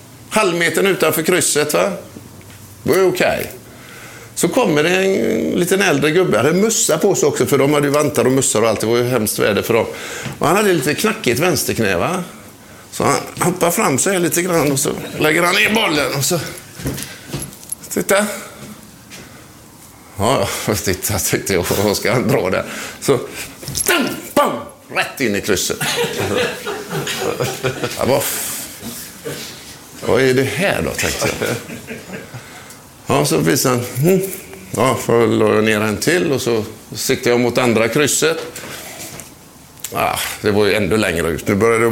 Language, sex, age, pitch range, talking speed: Swedish, male, 50-69, 115-165 Hz, 165 wpm